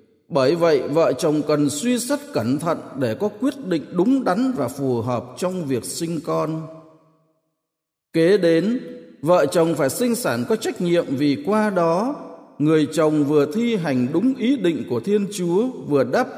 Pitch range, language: 140-205 Hz, Vietnamese